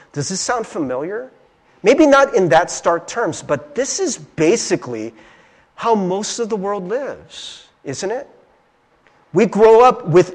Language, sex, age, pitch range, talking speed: English, male, 40-59, 165-225 Hz, 150 wpm